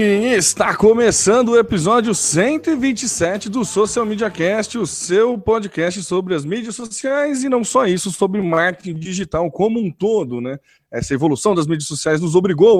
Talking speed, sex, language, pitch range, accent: 160 wpm, male, Portuguese, 160-220 Hz, Brazilian